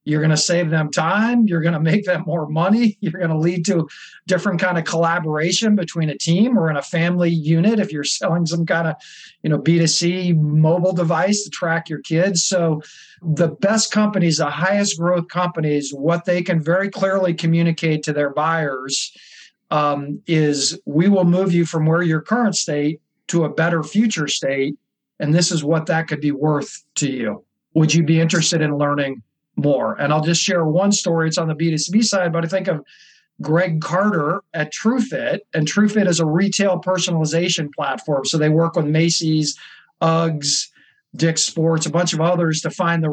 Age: 40-59